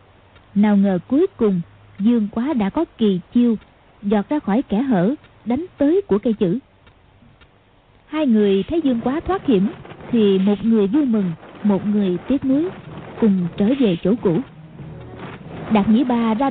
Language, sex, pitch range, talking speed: Vietnamese, female, 195-255 Hz, 165 wpm